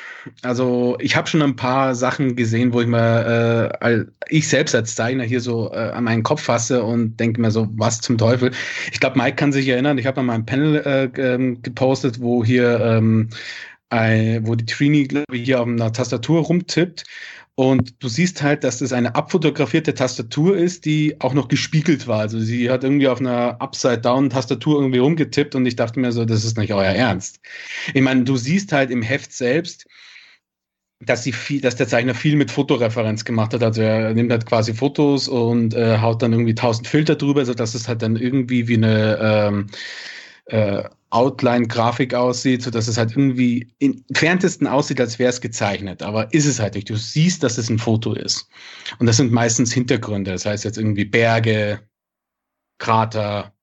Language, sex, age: German, male, 30-49